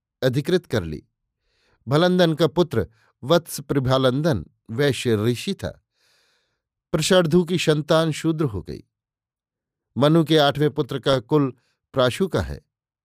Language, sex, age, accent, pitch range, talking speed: Hindi, male, 50-69, native, 120-155 Hz, 120 wpm